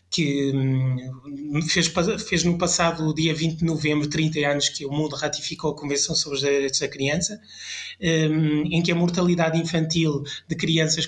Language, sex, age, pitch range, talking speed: Portuguese, male, 20-39, 150-180 Hz, 160 wpm